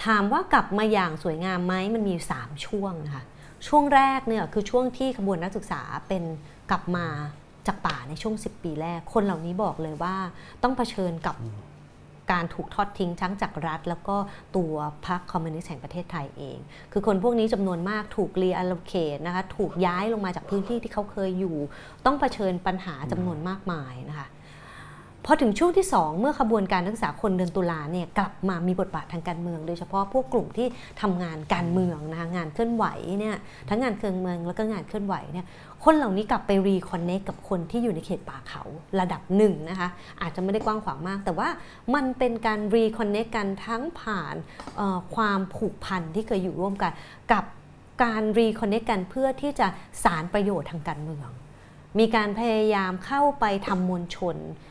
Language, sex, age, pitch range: Thai, female, 30-49, 170-215 Hz